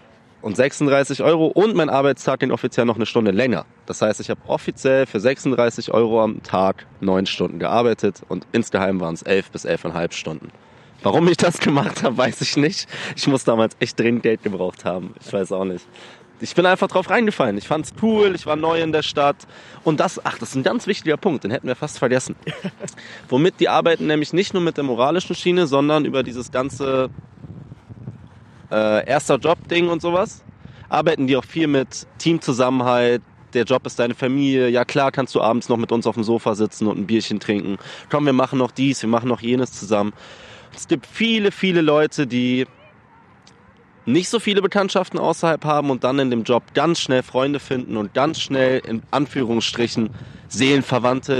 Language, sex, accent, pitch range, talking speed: German, male, German, 115-150 Hz, 195 wpm